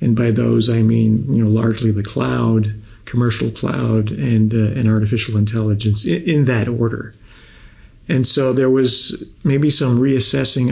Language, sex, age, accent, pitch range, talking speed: English, male, 40-59, American, 115-135 Hz, 155 wpm